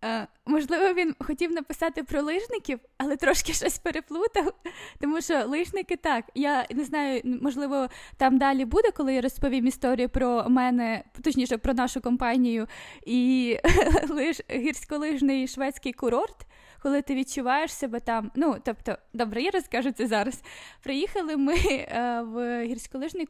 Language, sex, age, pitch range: Ukrainian, female, 10-29, 250-315 Hz